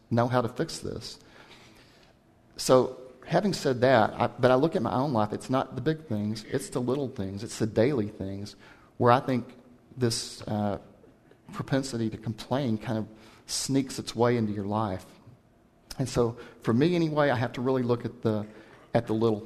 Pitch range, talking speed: 110-135 Hz, 190 wpm